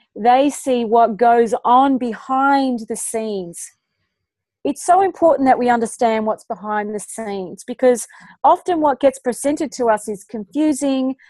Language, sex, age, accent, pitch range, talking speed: English, female, 30-49, Australian, 225-280 Hz, 145 wpm